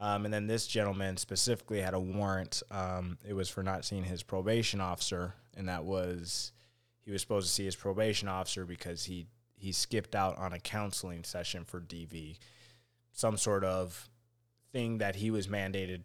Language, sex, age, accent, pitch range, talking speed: English, male, 20-39, American, 100-120 Hz, 180 wpm